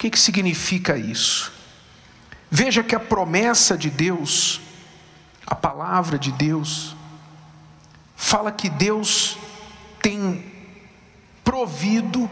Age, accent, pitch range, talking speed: 50-69, Brazilian, 165-215 Hz, 95 wpm